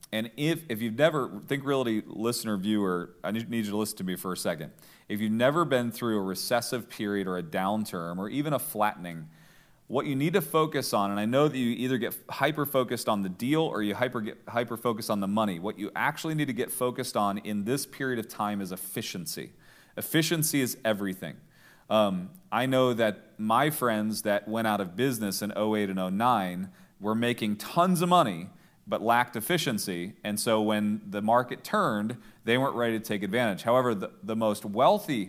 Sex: male